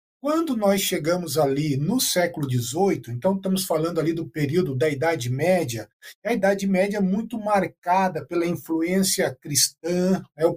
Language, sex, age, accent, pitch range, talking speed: Portuguese, male, 50-69, Brazilian, 165-205 Hz, 160 wpm